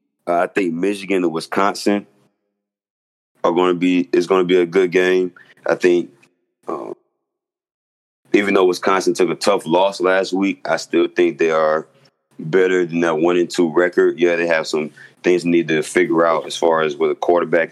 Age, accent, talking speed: 20-39, American, 185 wpm